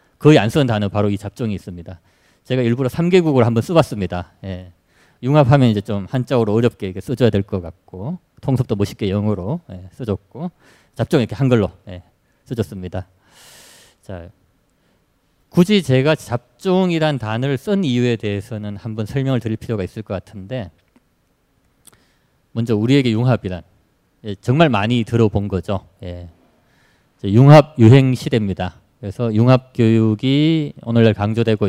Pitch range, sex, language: 100-130 Hz, male, Korean